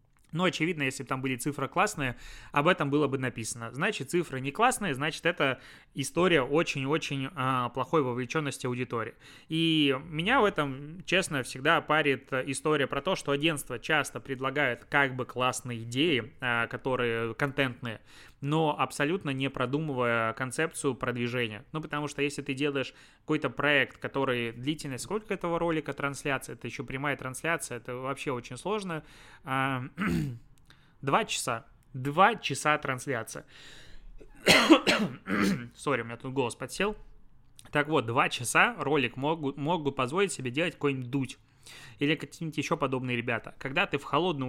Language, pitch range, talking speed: Russian, 125-150 Hz, 140 wpm